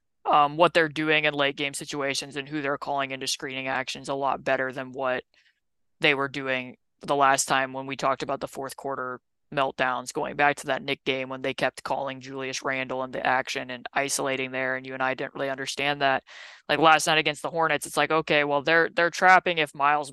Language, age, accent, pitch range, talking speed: English, 20-39, American, 135-165 Hz, 225 wpm